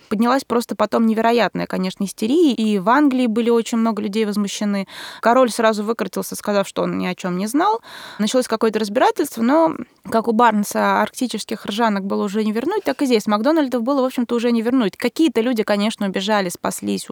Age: 20-39